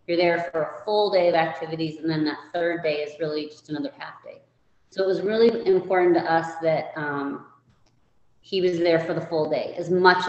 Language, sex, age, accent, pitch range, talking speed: English, female, 30-49, American, 155-175 Hz, 215 wpm